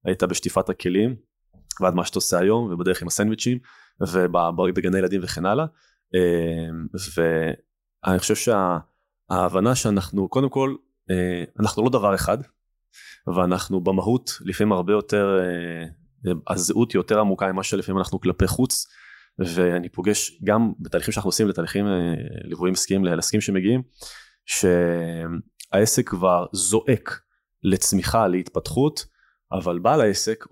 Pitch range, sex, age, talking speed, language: 90-115 Hz, male, 20-39, 110 wpm, Hebrew